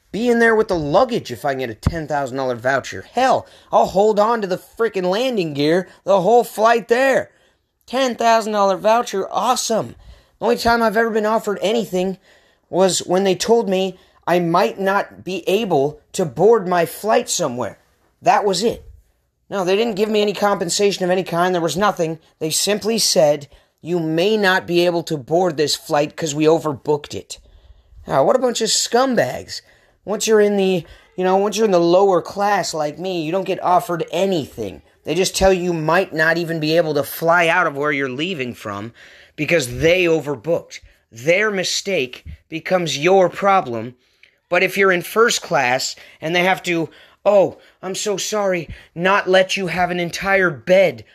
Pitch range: 165-205 Hz